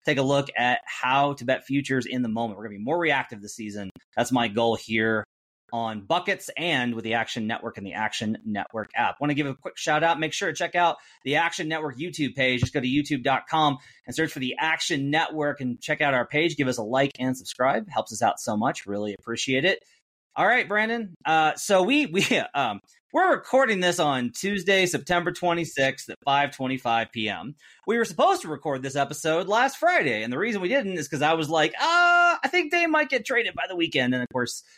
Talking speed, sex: 225 wpm, male